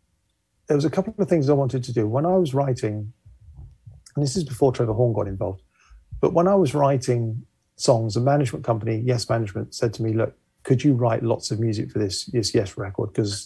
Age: 40-59